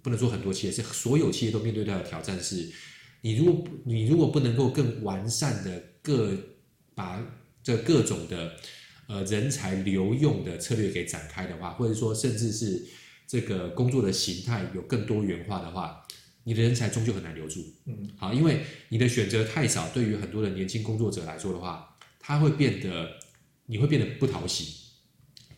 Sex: male